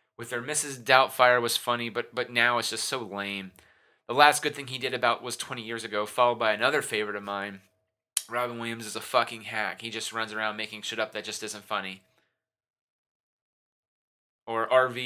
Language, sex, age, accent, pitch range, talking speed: English, male, 20-39, American, 105-125 Hz, 195 wpm